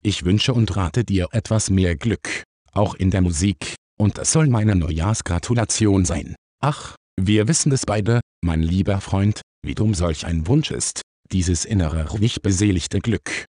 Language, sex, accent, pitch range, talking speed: German, male, German, 90-115 Hz, 165 wpm